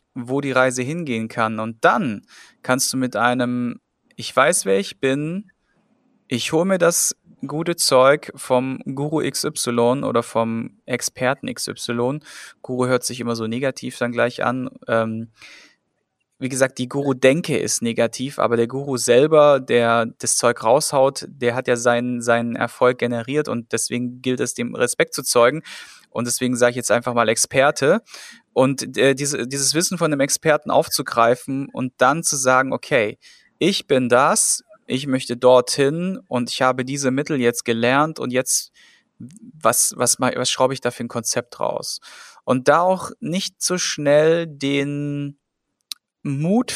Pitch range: 120-145 Hz